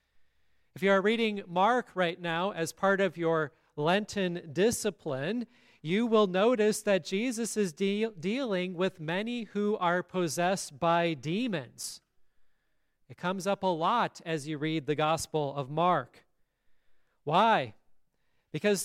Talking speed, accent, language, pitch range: 130 wpm, American, English, 170-215 Hz